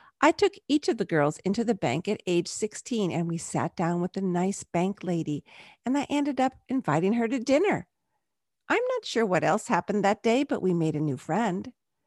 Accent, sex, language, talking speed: American, female, English, 215 wpm